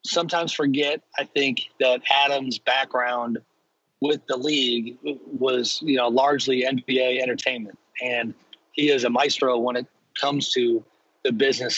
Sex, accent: male, American